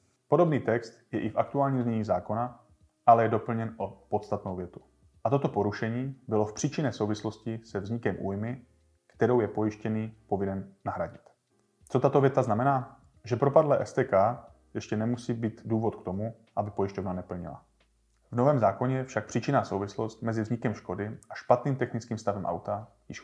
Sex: male